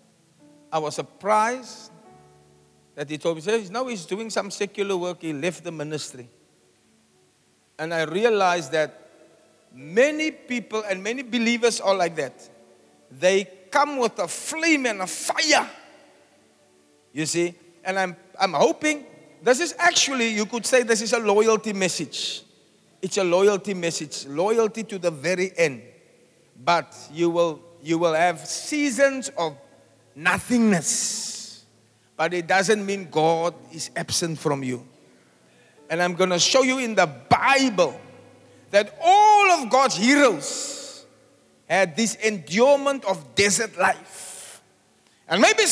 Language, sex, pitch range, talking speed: English, male, 165-255 Hz, 135 wpm